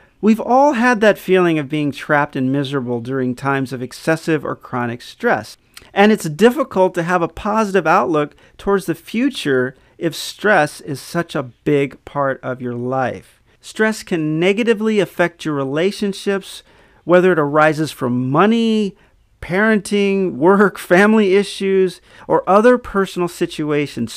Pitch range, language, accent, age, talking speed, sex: 140-200 Hz, English, American, 40-59, 140 wpm, male